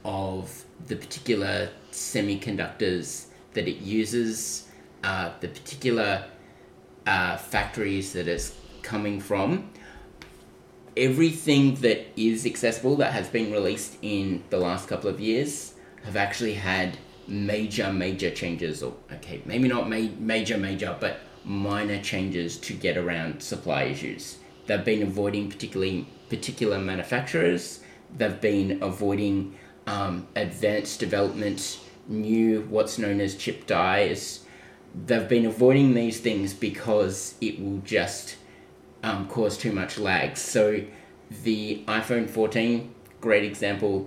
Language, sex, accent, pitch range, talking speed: English, male, Australian, 95-110 Hz, 120 wpm